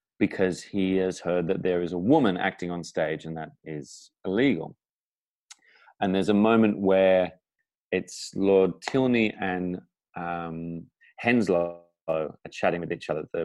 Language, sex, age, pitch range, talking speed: English, male, 30-49, 85-100 Hz, 145 wpm